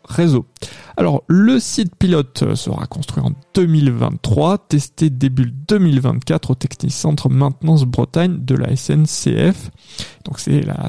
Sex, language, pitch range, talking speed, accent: male, French, 135-165 Hz, 120 wpm, French